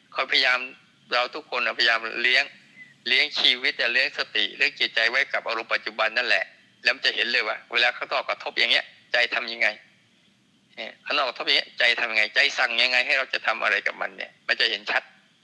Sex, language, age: male, Thai, 20-39